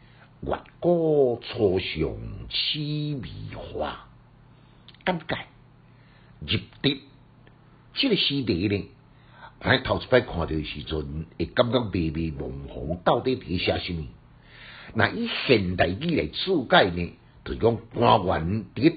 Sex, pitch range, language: male, 80-135 Hz, Chinese